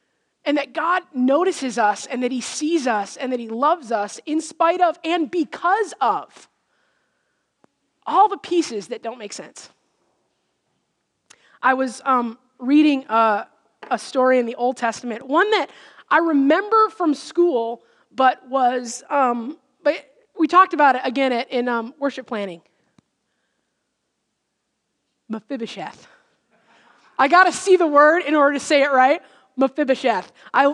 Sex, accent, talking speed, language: female, American, 145 wpm, English